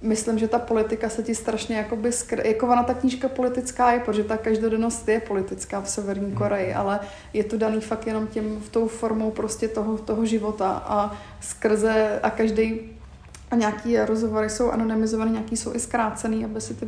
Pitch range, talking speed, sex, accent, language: 215-230 Hz, 190 wpm, female, native, Czech